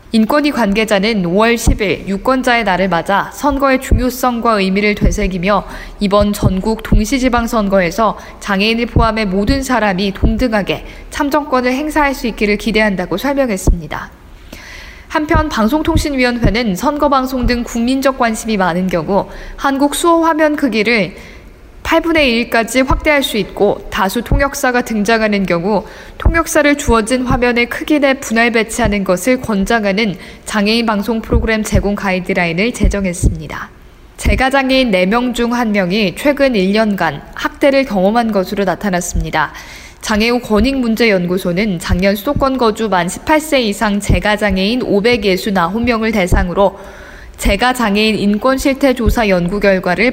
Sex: female